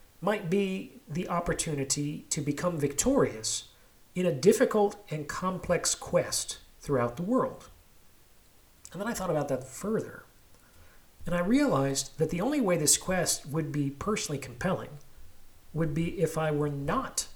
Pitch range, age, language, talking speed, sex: 130-170 Hz, 40-59, English, 145 wpm, male